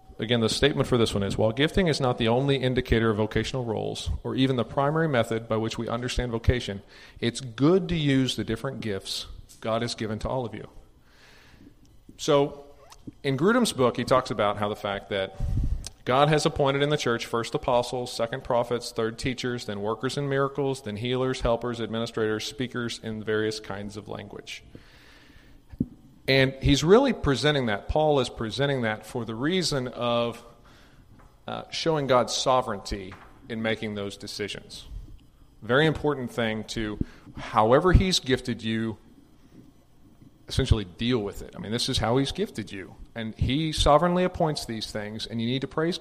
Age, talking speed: 40-59, 170 wpm